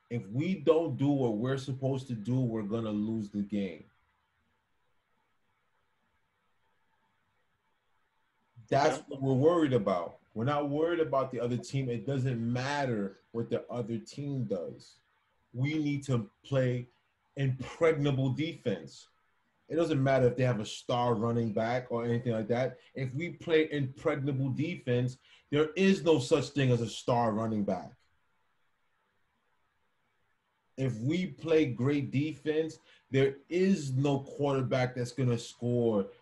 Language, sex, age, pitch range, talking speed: English, male, 30-49, 115-150 Hz, 140 wpm